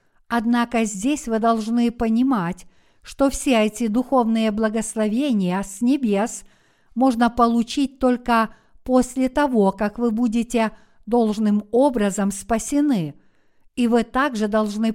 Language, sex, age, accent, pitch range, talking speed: Russian, female, 60-79, native, 215-255 Hz, 110 wpm